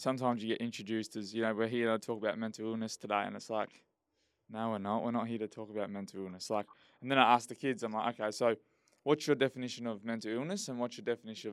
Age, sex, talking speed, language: 20-39, male, 255 wpm, English